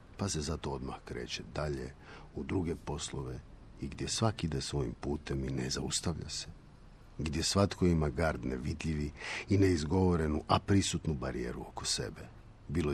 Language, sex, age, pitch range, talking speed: Croatian, male, 50-69, 75-95 Hz, 150 wpm